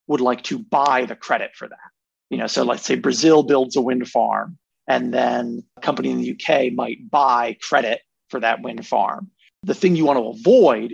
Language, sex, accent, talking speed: English, male, American, 210 wpm